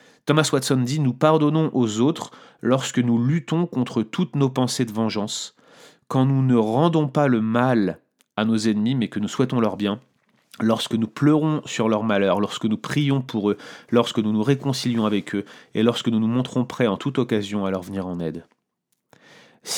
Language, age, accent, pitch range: French, 30-49, French, 110-150 Hz